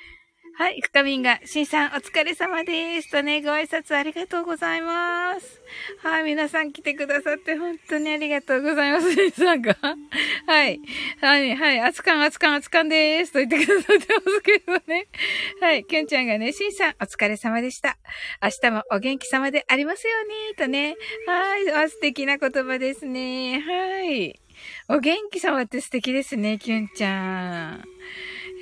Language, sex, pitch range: Japanese, female, 250-335 Hz